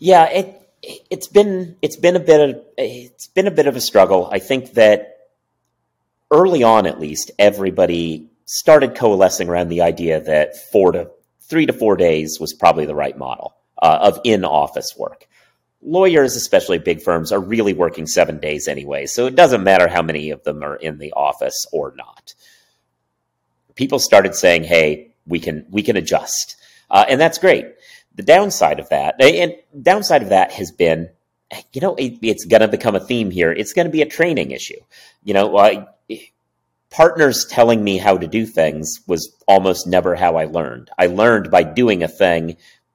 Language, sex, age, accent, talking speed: English, male, 40-59, American, 185 wpm